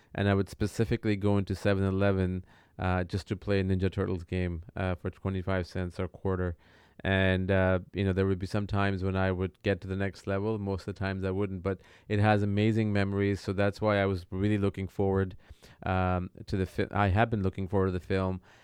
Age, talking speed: 30-49, 225 wpm